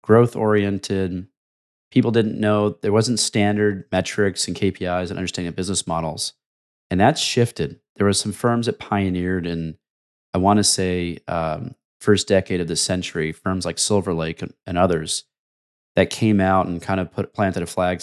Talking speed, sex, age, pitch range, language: 170 wpm, male, 30-49, 85-105 Hz, English